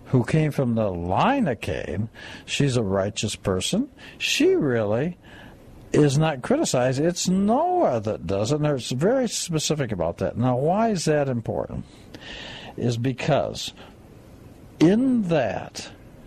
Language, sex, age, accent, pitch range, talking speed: English, male, 60-79, American, 115-170 Hz, 135 wpm